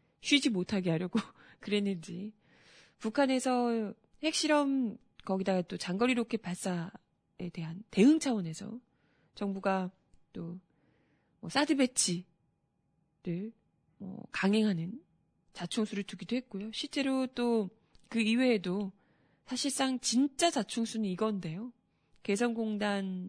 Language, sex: Korean, female